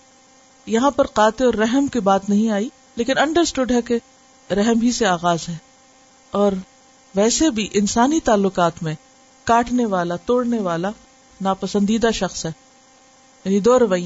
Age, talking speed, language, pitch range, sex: 50-69, 135 wpm, Urdu, 200-265 Hz, female